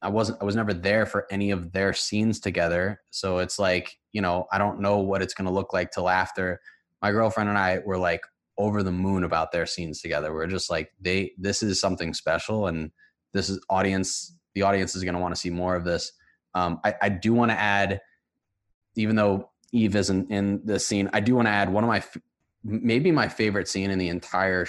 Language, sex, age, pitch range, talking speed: English, male, 20-39, 95-110 Hz, 225 wpm